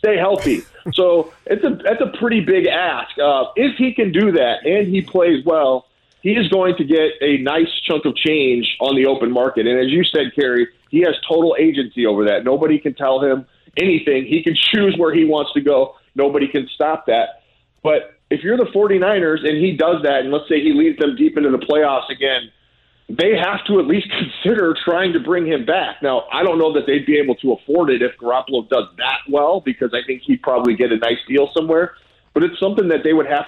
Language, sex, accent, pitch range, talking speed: English, male, American, 140-185 Hz, 220 wpm